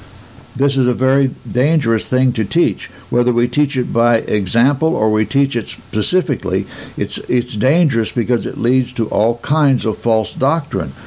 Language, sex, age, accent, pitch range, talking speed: English, male, 60-79, American, 110-135 Hz, 170 wpm